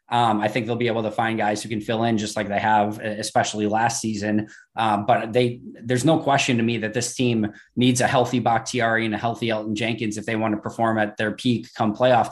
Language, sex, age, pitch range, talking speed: English, male, 20-39, 115-135 Hz, 245 wpm